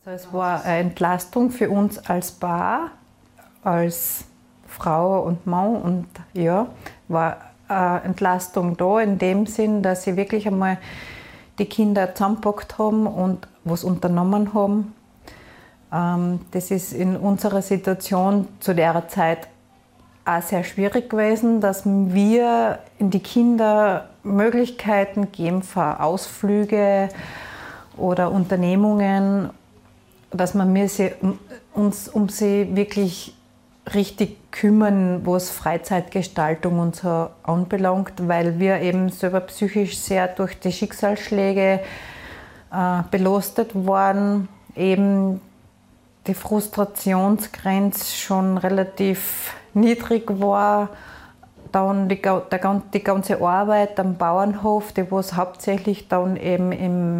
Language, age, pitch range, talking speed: German, 30-49, 180-205 Hz, 105 wpm